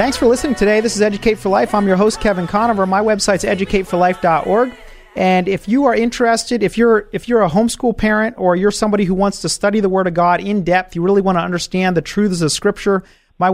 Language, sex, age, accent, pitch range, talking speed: English, male, 40-59, American, 175-210 Hz, 230 wpm